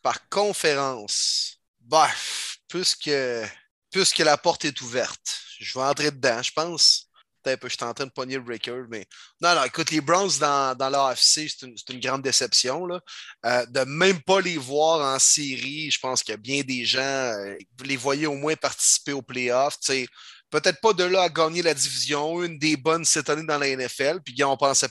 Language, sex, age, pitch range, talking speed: French, male, 30-49, 130-155 Hz, 215 wpm